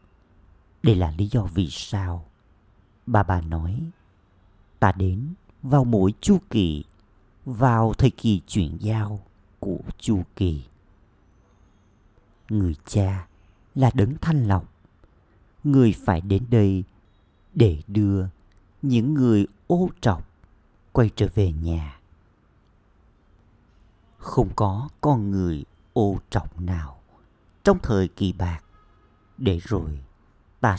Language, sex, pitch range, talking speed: Vietnamese, male, 90-110 Hz, 110 wpm